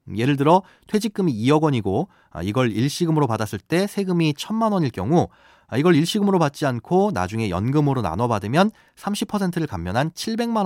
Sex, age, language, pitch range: male, 30-49, Korean, 115-185 Hz